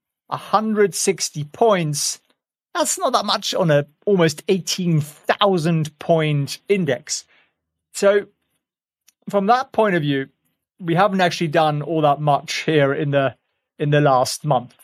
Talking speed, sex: 140 wpm, male